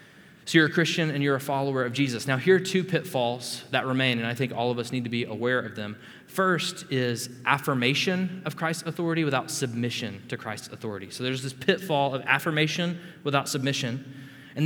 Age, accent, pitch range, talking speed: 20-39, American, 120-150 Hz, 200 wpm